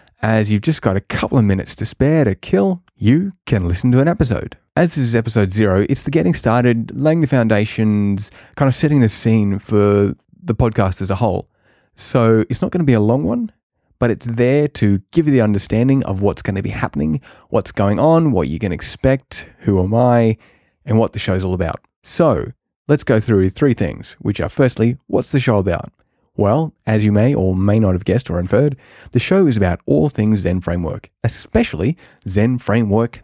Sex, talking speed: male, 210 wpm